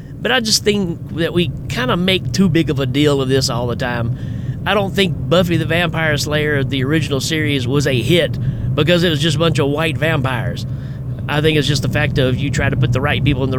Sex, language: male, English